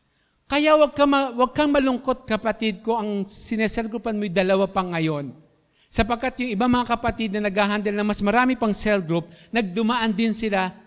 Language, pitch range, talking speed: Filipino, 155-225 Hz, 180 wpm